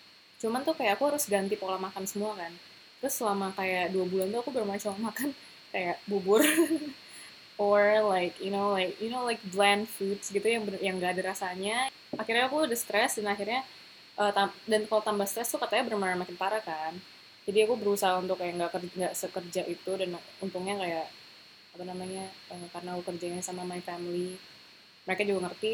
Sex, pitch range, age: female, 185-220 Hz, 20-39